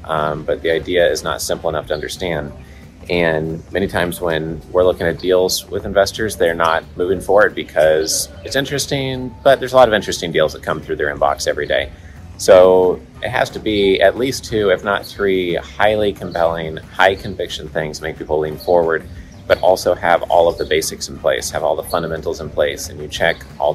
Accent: American